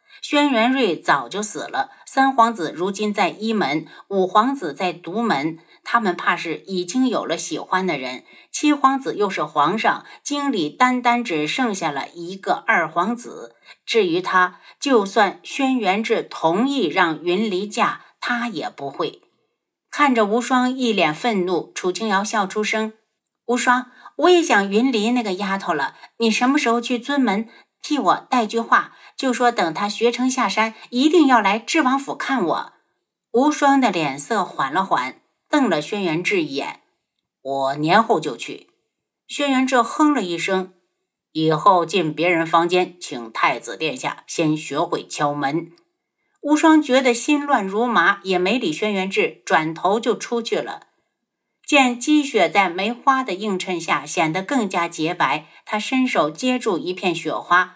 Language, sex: Chinese, female